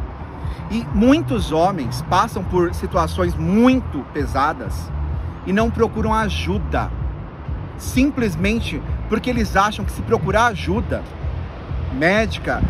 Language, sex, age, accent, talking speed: Portuguese, male, 40-59, Brazilian, 100 wpm